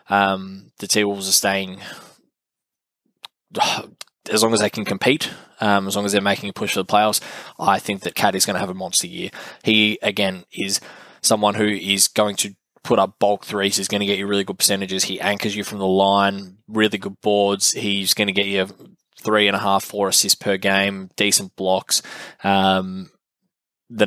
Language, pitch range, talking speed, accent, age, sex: English, 95-105 Hz, 195 wpm, Australian, 10-29, male